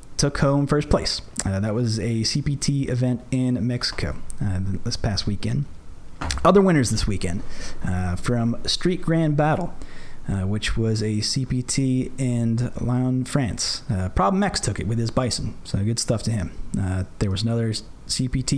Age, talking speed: 30-49, 165 wpm